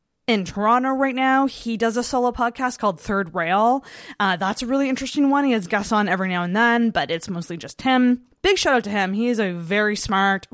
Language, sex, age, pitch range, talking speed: English, female, 20-39, 175-235 Hz, 235 wpm